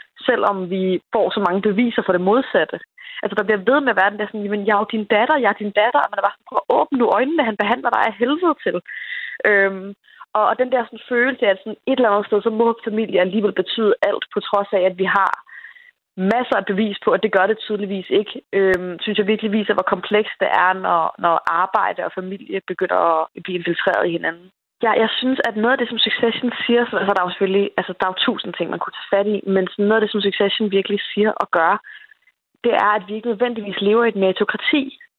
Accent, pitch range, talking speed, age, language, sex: native, 190-230 Hz, 240 wpm, 20-39, Danish, female